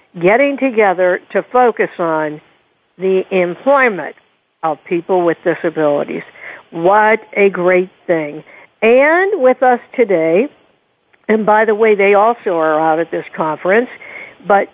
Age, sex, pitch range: 60-79, female, 185-225 Hz